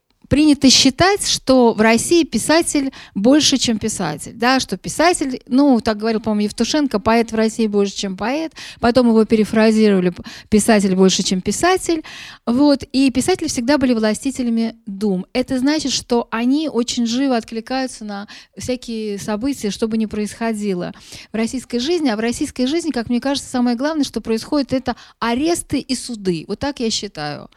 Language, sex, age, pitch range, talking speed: Russian, female, 20-39, 210-255 Hz, 155 wpm